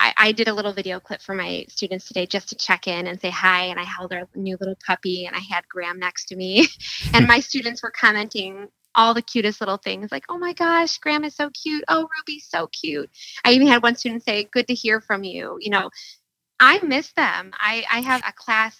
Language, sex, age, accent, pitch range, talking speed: English, female, 20-39, American, 190-235 Hz, 235 wpm